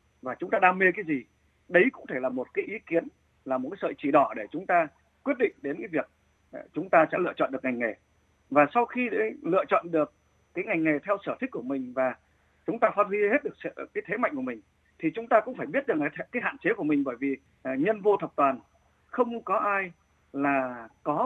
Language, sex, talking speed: Vietnamese, male, 245 wpm